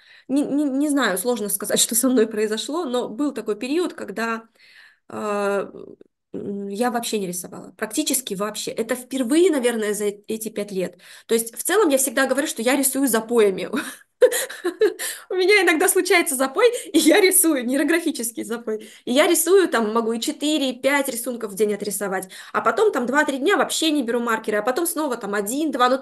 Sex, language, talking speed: female, Russian, 175 wpm